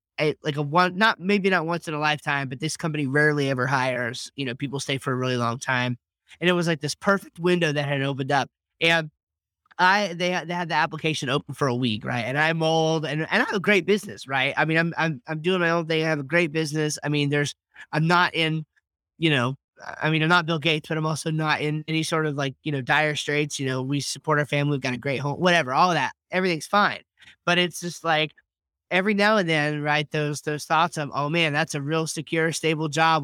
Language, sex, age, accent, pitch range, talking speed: English, male, 20-39, American, 135-165 Hz, 250 wpm